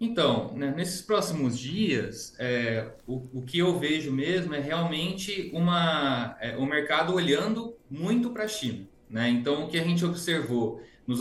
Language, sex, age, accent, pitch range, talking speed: Portuguese, male, 20-39, Brazilian, 130-170 Hz, 145 wpm